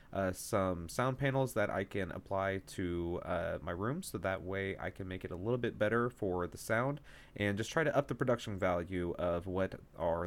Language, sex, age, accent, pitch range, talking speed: English, male, 30-49, American, 95-115 Hz, 215 wpm